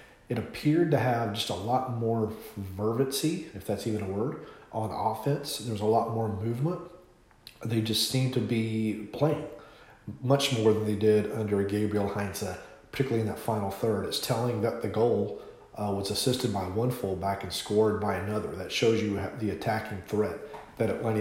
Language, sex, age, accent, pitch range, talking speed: English, male, 40-59, American, 100-115 Hz, 180 wpm